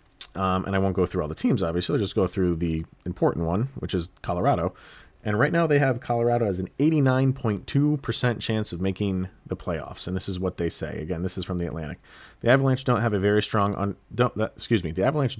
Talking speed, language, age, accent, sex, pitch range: 235 wpm, English, 30-49, American, male, 85-115 Hz